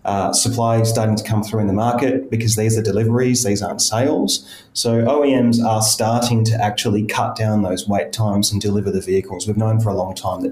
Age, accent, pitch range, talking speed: 30-49, Australian, 105-120 Hz, 215 wpm